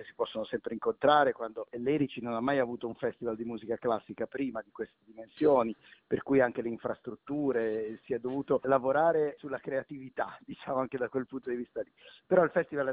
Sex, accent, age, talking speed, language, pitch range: male, native, 50-69, 195 wpm, Italian, 115-150 Hz